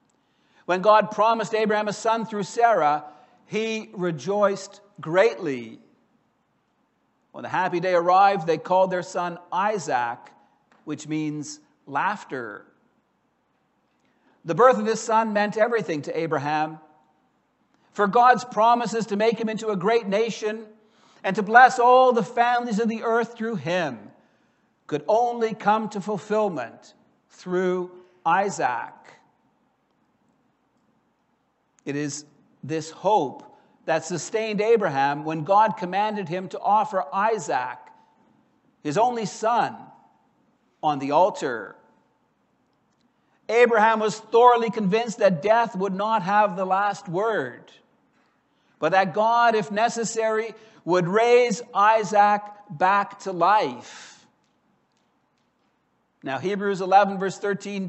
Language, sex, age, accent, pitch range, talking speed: English, male, 60-79, American, 180-225 Hz, 115 wpm